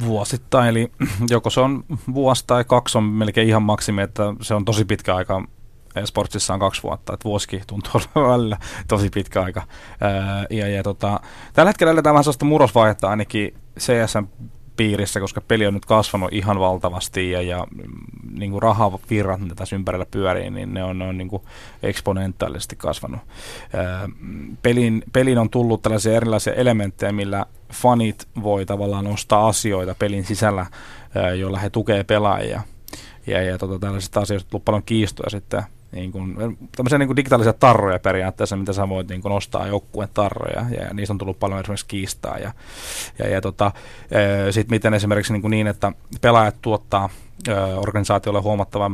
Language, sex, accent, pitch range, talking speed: Finnish, male, native, 100-115 Hz, 155 wpm